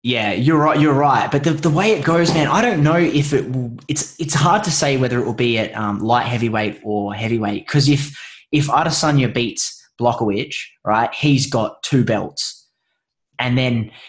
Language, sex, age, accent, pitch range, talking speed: English, male, 20-39, Australian, 115-150 Hz, 190 wpm